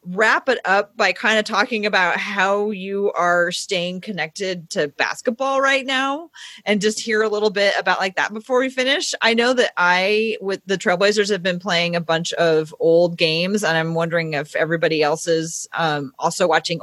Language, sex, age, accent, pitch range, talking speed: English, female, 30-49, American, 165-215 Hz, 195 wpm